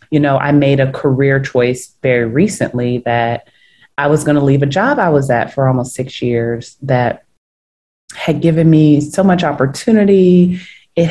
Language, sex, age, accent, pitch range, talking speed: English, female, 30-49, American, 130-150 Hz, 175 wpm